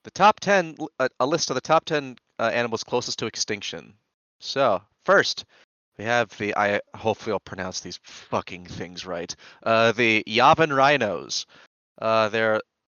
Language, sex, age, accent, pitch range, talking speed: English, male, 30-49, American, 100-140 Hz, 160 wpm